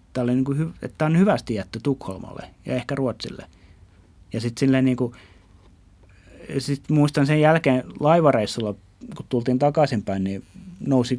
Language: Finnish